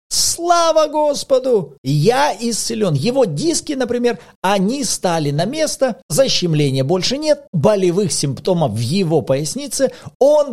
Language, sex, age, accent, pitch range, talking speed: Russian, male, 40-59, native, 160-245 Hz, 115 wpm